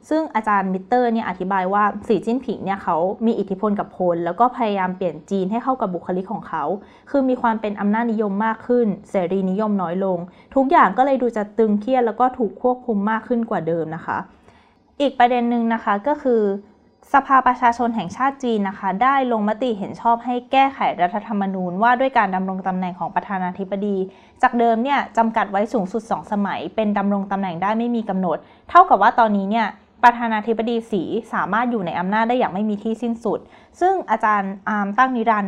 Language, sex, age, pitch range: Thai, female, 20-39, 195-240 Hz